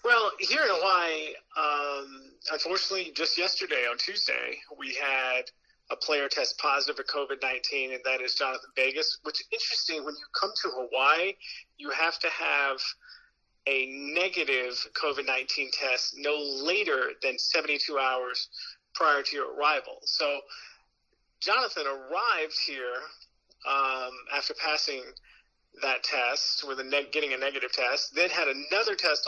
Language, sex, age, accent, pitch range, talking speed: English, male, 30-49, American, 135-190 Hz, 140 wpm